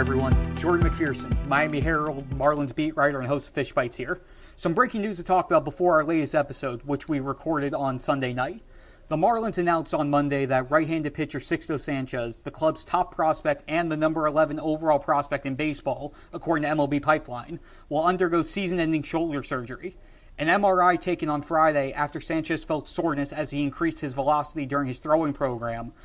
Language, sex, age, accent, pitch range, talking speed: English, male, 30-49, American, 140-165 Hz, 180 wpm